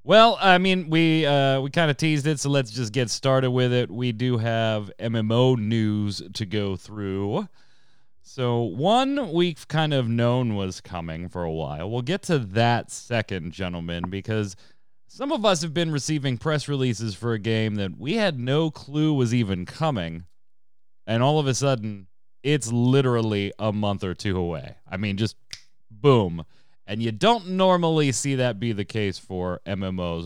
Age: 30-49